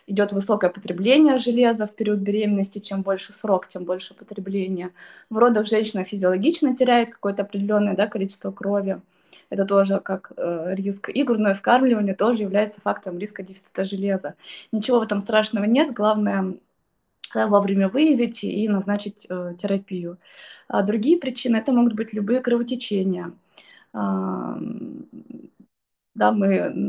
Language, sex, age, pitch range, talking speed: Russian, female, 20-39, 190-220 Hz, 130 wpm